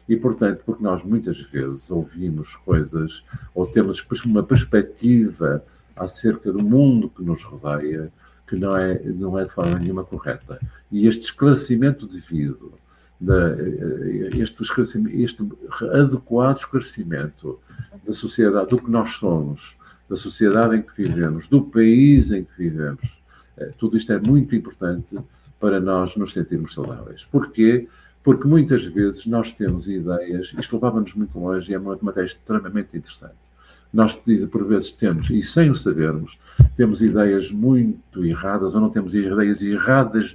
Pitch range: 90-115 Hz